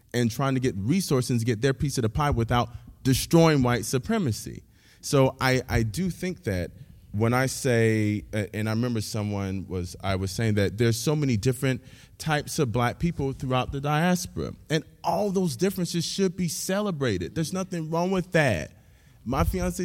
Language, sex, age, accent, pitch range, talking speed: English, male, 20-39, American, 115-175 Hz, 180 wpm